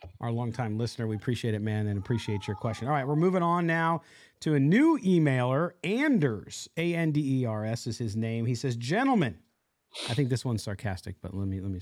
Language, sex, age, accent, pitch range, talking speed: English, male, 40-59, American, 120-175 Hz, 200 wpm